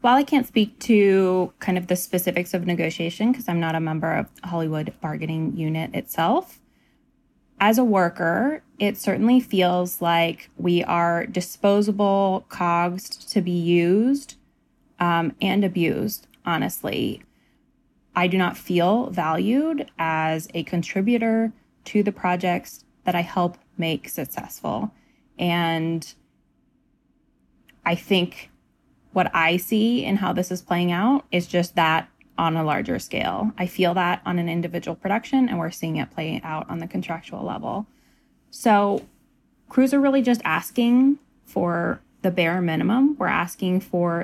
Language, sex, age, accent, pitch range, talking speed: English, female, 20-39, American, 175-235 Hz, 140 wpm